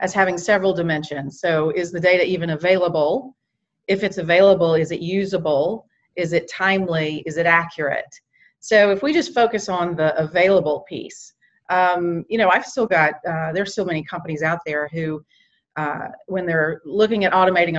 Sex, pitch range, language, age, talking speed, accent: female, 160-190 Hz, English, 40-59, 170 wpm, American